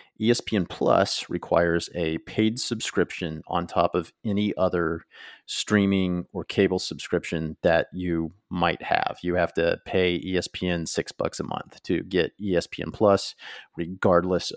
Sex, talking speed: male, 135 wpm